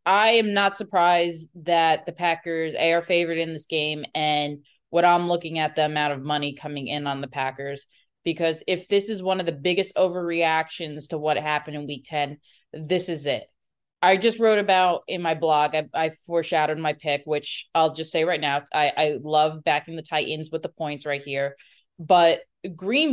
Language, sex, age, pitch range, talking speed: English, female, 20-39, 160-220 Hz, 195 wpm